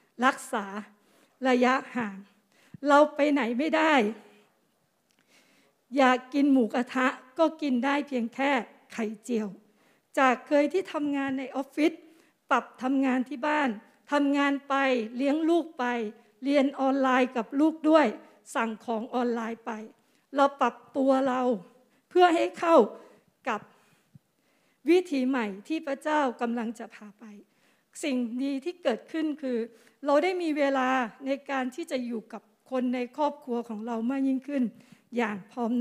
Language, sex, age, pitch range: Thai, female, 60-79, 235-285 Hz